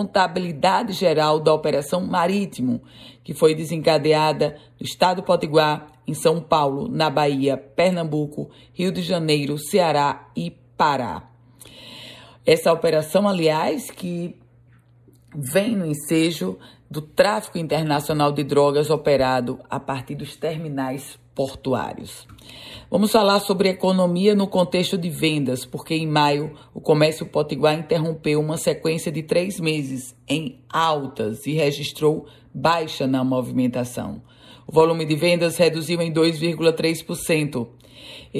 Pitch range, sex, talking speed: 140-175 Hz, female, 115 wpm